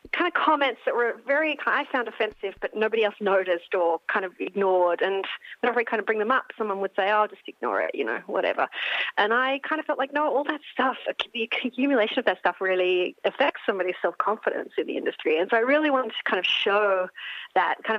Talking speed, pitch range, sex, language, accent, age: 225 wpm, 210-325 Hz, female, English, Australian, 40-59